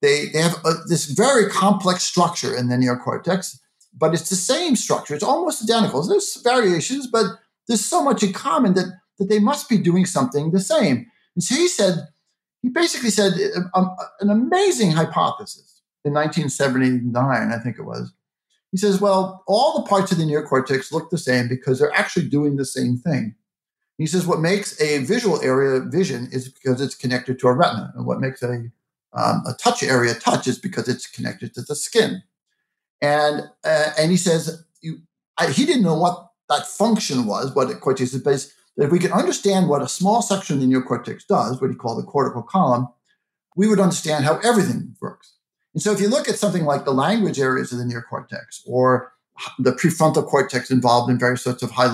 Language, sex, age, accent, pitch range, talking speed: English, male, 50-69, American, 135-205 Hz, 195 wpm